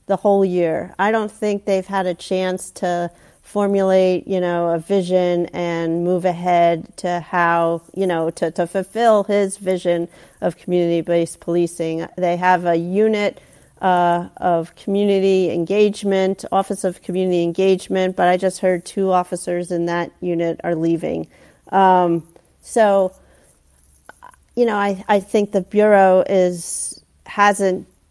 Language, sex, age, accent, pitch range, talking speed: English, female, 40-59, American, 170-195 Hz, 140 wpm